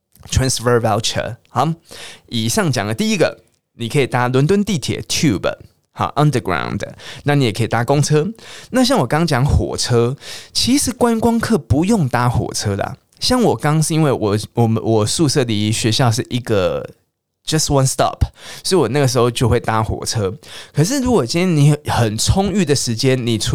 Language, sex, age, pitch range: Chinese, male, 20-39, 115-155 Hz